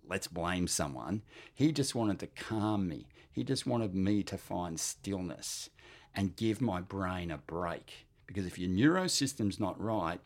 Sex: male